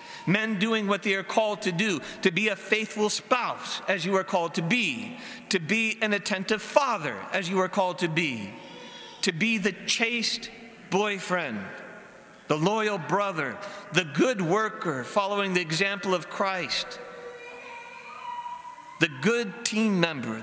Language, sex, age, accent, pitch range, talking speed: English, male, 40-59, American, 175-220 Hz, 145 wpm